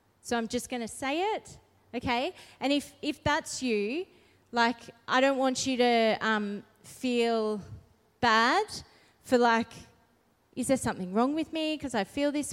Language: English